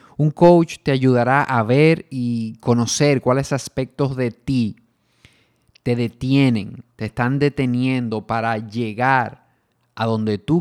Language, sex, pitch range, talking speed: Spanish, male, 110-135 Hz, 125 wpm